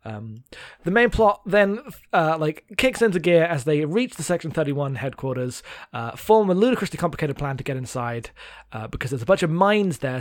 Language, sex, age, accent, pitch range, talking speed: English, male, 20-39, British, 135-185 Hz, 200 wpm